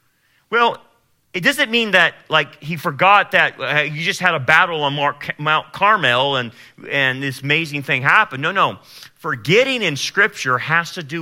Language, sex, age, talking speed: English, male, 40-59, 175 wpm